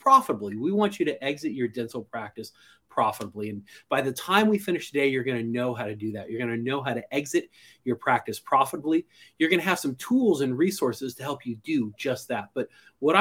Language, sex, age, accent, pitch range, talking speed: English, male, 30-49, American, 115-175 Hz, 230 wpm